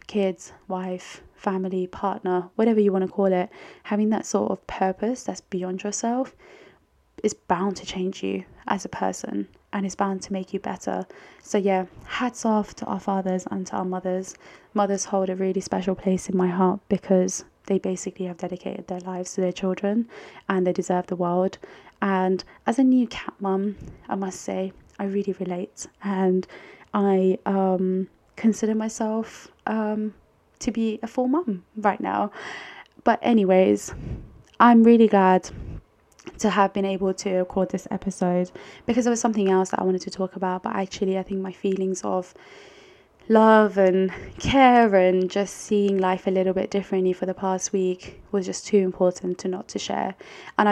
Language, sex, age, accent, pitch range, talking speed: English, female, 20-39, British, 185-205 Hz, 175 wpm